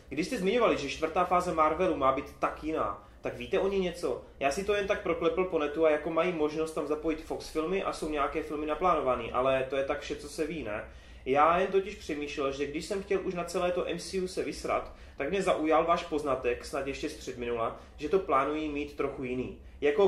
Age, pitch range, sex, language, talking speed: 20-39, 135-170 Hz, male, Czech, 230 wpm